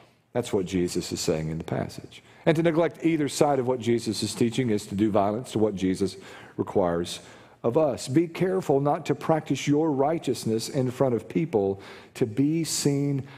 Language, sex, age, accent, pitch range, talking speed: English, male, 50-69, American, 115-145 Hz, 190 wpm